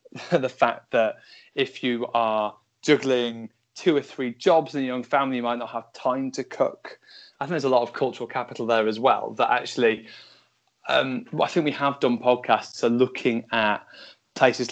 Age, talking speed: 20-39, 190 wpm